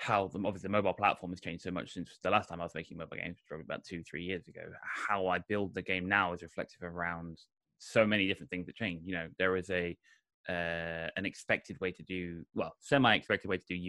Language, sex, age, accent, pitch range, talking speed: English, male, 20-39, British, 85-100 Hz, 240 wpm